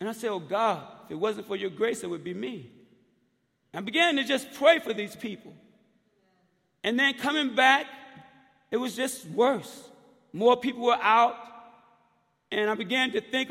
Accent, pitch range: American, 240-350 Hz